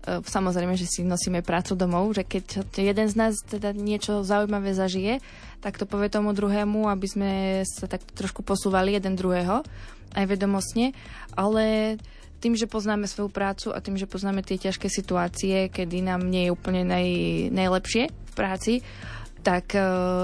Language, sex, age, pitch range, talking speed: Slovak, female, 20-39, 180-200 Hz, 155 wpm